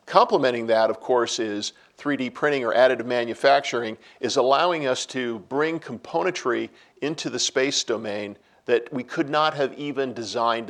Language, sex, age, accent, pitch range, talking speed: English, male, 50-69, American, 115-135 Hz, 150 wpm